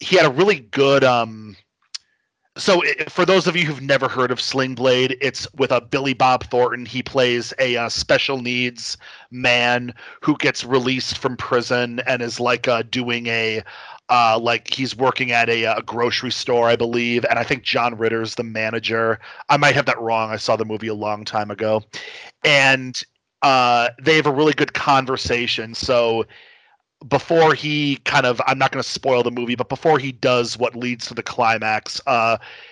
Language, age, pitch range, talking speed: English, 40-59, 115-130 Hz, 190 wpm